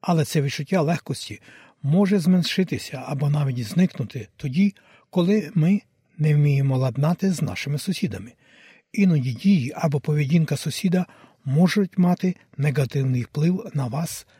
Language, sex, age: Ukrainian, male, 60-79